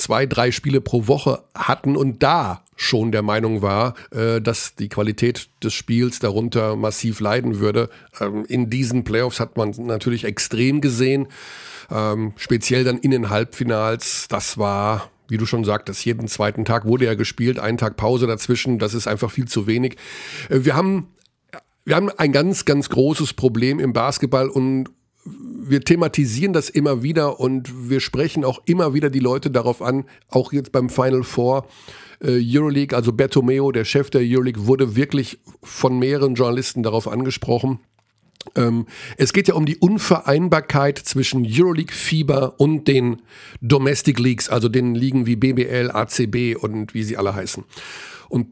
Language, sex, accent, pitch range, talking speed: German, male, German, 115-140 Hz, 165 wpm